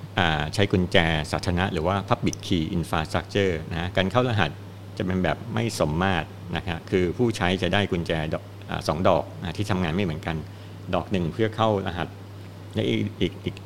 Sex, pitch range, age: male, 85-100 Hz, 60-79